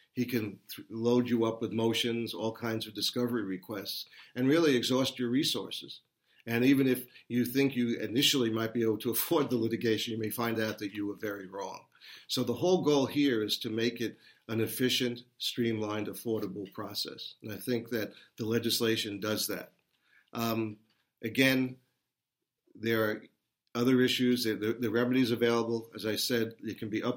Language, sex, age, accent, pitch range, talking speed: English, male, 50-69, American, 110-120 Hz, 175 wpm